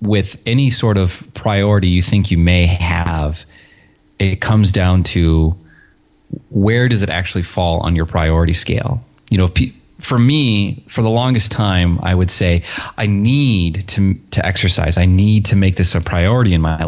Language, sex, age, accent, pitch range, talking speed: English, male, 30-49, American, 85-110 Hz, 170 wpm